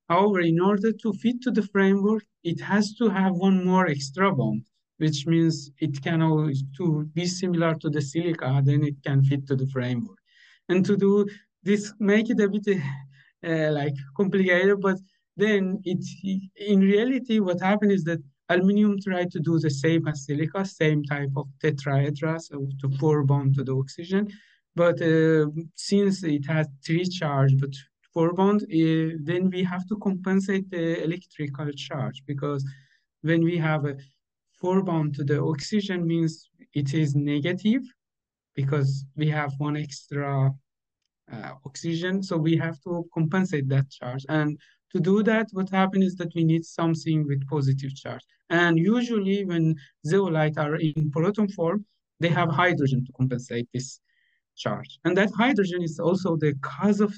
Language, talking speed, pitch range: Ukrainian, 160 wpm, 145-190 Hz